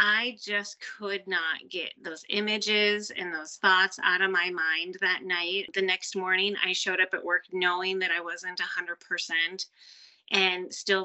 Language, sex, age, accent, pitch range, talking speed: English, female, 30-49, American, 185-215 Hz, 170 wpm